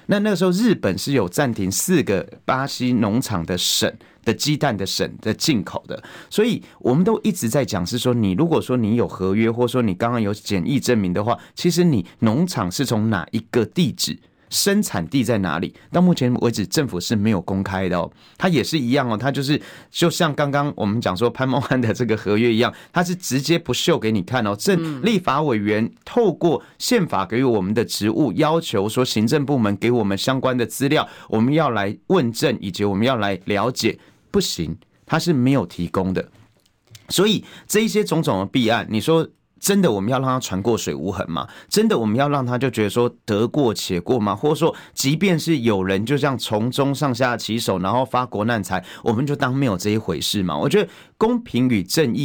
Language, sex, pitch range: Chinese, male, 105-155 Hz